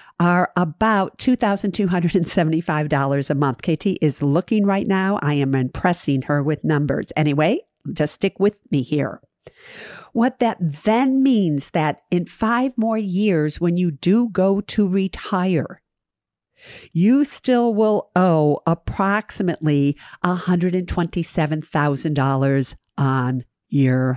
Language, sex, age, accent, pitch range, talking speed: English, female, 50-69, American, 150-200 Hz, 110 wpm